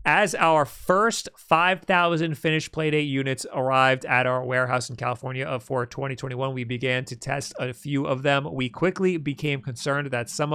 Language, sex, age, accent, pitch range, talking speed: English, male, 40-59, American, 130-155 Hz, 165 wpm